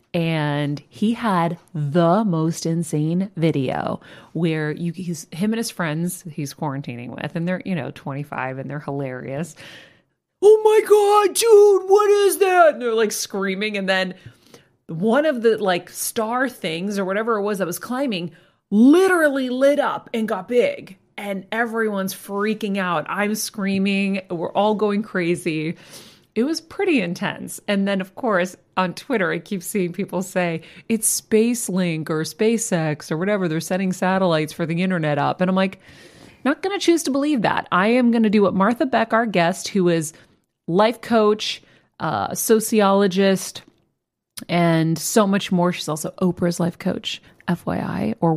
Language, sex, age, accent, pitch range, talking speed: English, female, 30-49, American, 170-220 Hz, 165 wpm